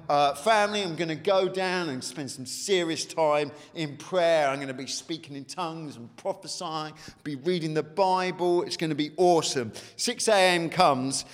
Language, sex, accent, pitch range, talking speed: English, male, British, 140-195 Hz, 185 wpm